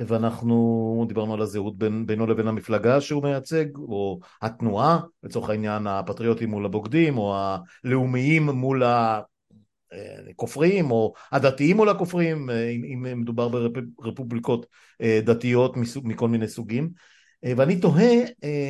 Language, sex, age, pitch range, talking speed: Hebrew, male, 50-69, 110-140 Hz, 110 wpm